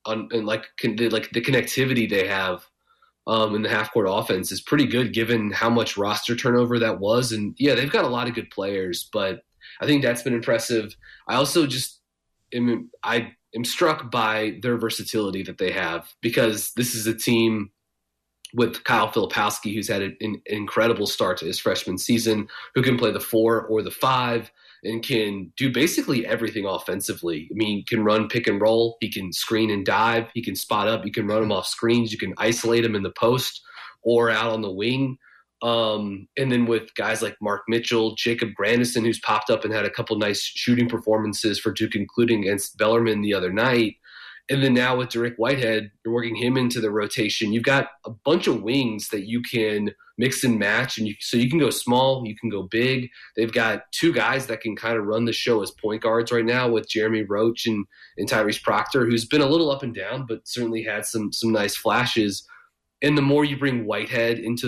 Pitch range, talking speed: 105-120 Hz, 210 wpm